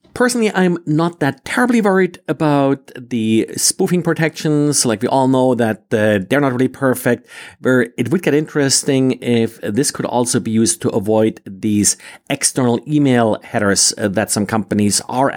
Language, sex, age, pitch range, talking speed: English, male, 50-69, 100-130 Hz, 160 wpm